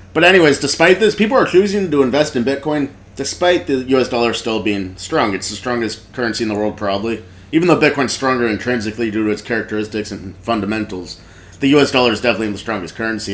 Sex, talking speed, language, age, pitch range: male, 205 wpm, English, 30-49, 105-125 Hz